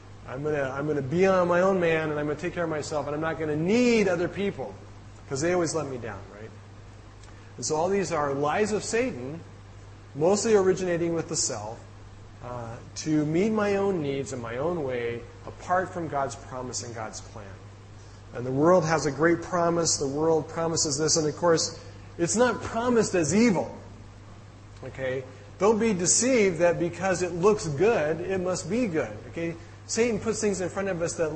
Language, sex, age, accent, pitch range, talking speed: English, male, 30-49, American, 105-175 Hz, 200 wpm